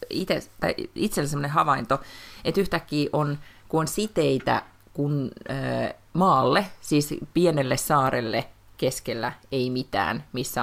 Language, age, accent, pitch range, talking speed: Finnish, 30-49, native, 120-145 Hz, 105 wpm